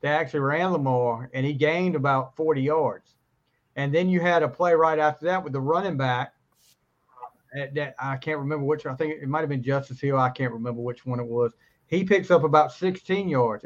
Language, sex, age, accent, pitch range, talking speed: English, male, 40-59, American, 130-185 Hz, 220 wpm